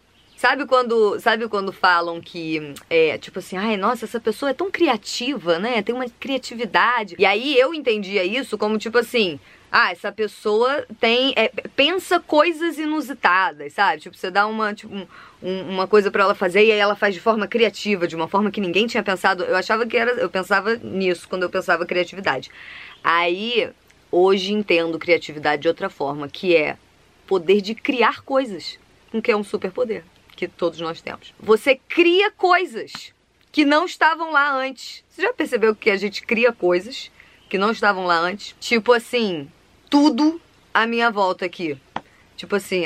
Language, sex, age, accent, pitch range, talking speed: Portuguese, female, 20-39, Brazilian, 180-245 Hz, 175 wpm